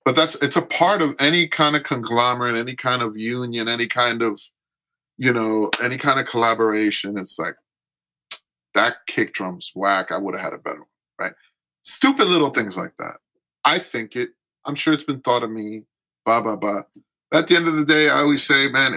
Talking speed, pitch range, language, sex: 205 wpm, 100-135 Hz, English, male